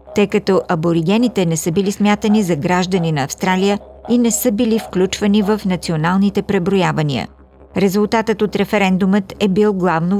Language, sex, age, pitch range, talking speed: Bulgarian, female, 50-69, 180-215 Hz, 145 wpm